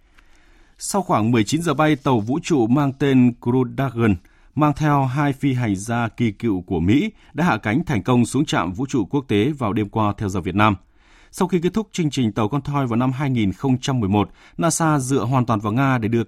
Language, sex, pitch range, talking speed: Vietnamese, male, 105-140 Hz, 220 wpm